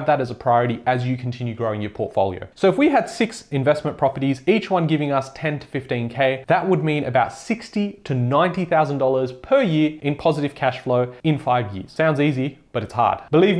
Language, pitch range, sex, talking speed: English, 125-160 Hz, male, 205 wpm